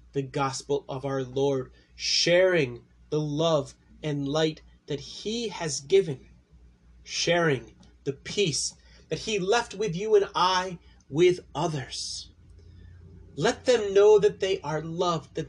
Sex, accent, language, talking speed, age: male, American, English, 130 wpm, 30-49